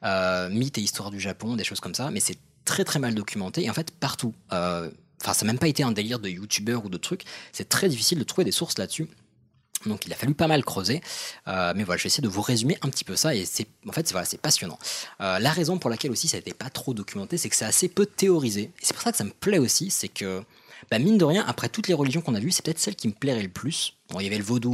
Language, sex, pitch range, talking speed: French, male, 100-150 Hz, 300 wpm